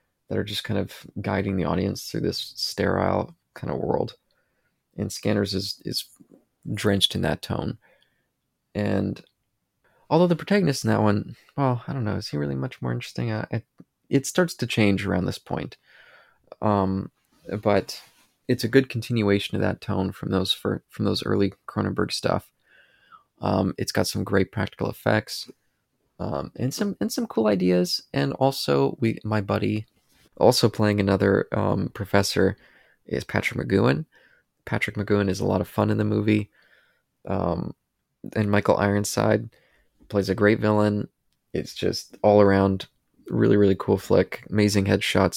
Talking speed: 155 wpm